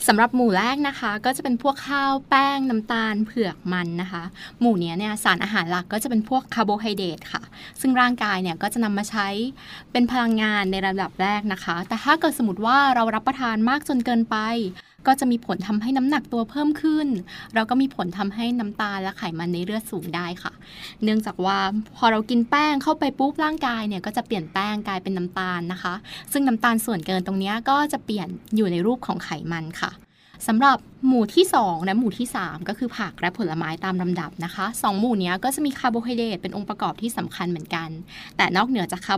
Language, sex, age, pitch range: Thai, female, 20-39, 190-245 Hz